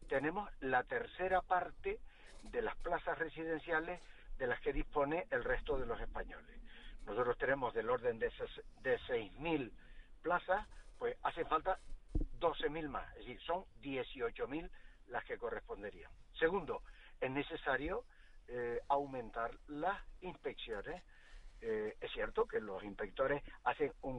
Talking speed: 135 wpm